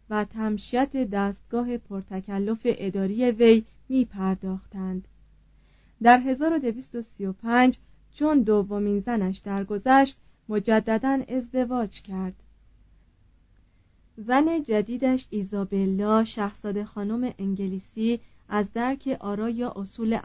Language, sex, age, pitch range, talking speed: Persian, female, 30-49, 195-245 Hz, 85 wpm